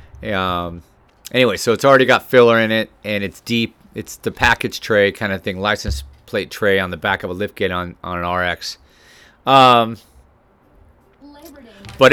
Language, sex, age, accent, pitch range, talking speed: English, male, 30-49, American, 90-130 Hz, 170 wpm